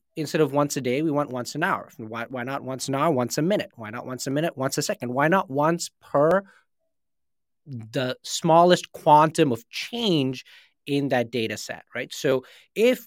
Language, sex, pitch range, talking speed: English, male, 130-180 Hz, 200 wpm